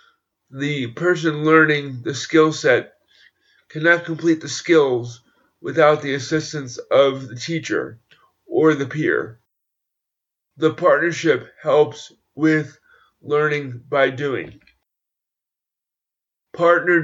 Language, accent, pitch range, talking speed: English, American, 135-155 Hz, 95 wpm